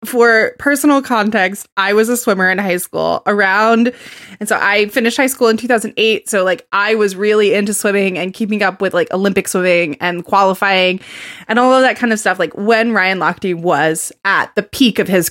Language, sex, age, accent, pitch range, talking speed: English, female, 20-39, American, 195-295 Hz, 205 wpm